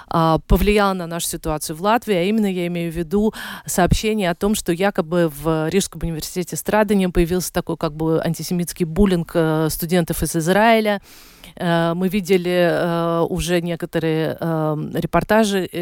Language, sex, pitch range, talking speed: Russian, female, 165-200 Hz, 135 wpm